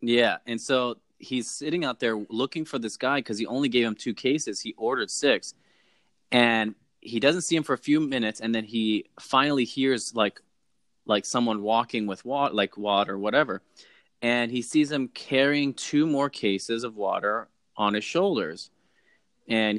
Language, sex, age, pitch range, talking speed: English, male, 20-39, 105-125 Hz, 175 wpm